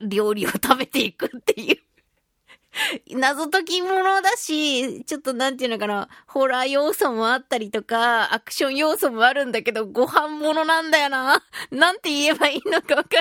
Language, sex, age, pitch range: Japanese, female, 30-49, 225-330 Hz